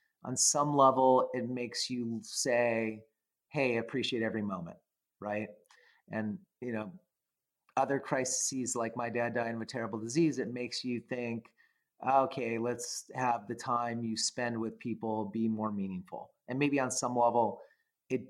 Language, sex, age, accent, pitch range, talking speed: English, male, 30-49, American, 115-130 Hz, 155 wpm